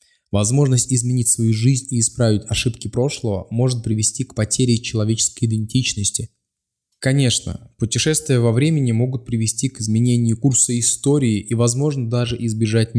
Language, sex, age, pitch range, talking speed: Russian, male, 20-39, 110-130 Hz, 130 wpm